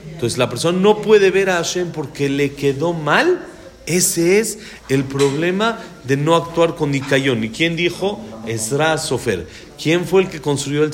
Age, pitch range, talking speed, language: 40-59, 130-180 Hz, 175 wpm, Spanish